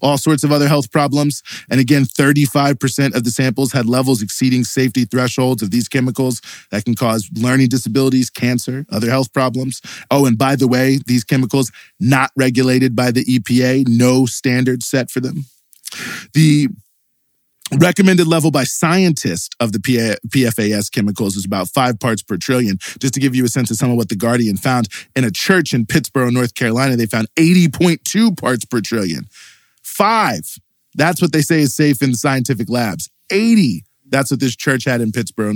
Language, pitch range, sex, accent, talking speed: English, 125-155 Hz, male, American, 175 wpm